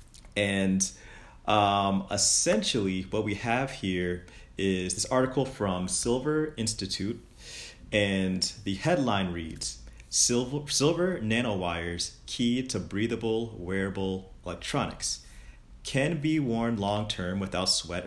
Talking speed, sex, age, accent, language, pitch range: 105 wpm, male, 30-49, American, English, 90-120 Hz